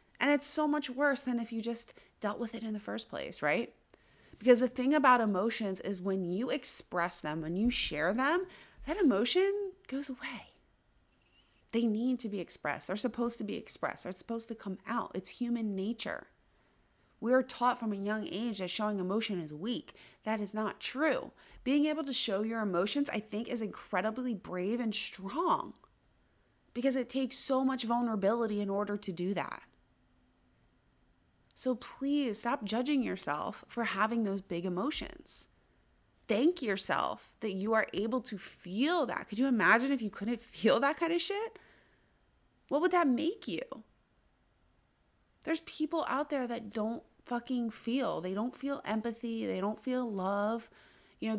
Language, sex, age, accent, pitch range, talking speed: English, female, 30-49, American, 205-260 Hz, 170 wpm